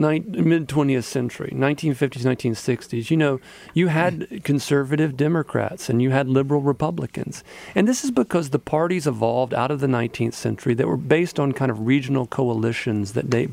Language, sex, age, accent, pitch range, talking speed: English, male, 40-59, American, 120-150 Hz, 170 wpm